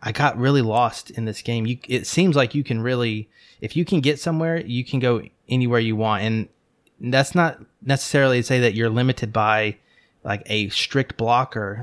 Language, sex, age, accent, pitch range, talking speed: English, male, 30-49, American, 110-135 Hz, 195 wpm